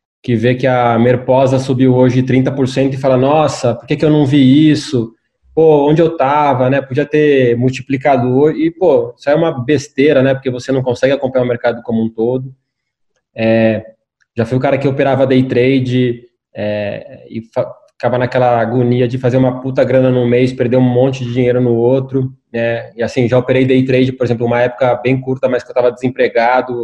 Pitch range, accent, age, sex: 120-140 Hz, Brazilian, 20-39, male